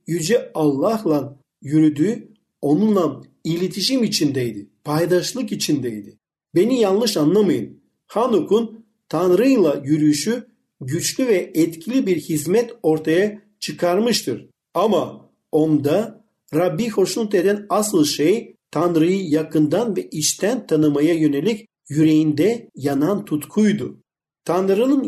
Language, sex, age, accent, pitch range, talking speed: Turkish, male, 50-69, native, 155-220 Hz, 90 wpm